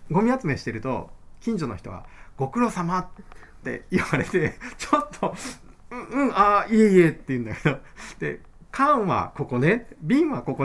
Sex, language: male, Japanese